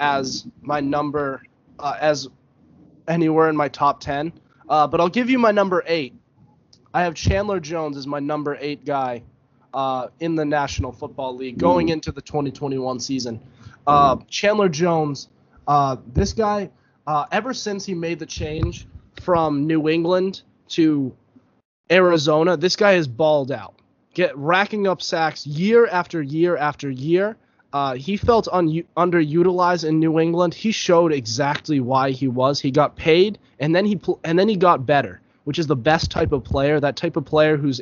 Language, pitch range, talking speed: English, 140-175 Hz, 170 wpm